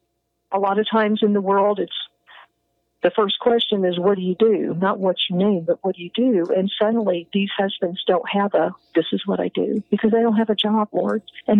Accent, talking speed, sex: American, 235 wpm, female